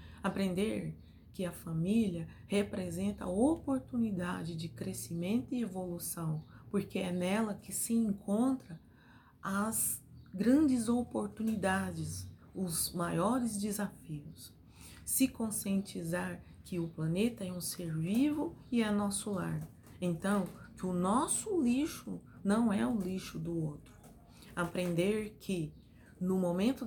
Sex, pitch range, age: female, 175-240 Hz, 30-49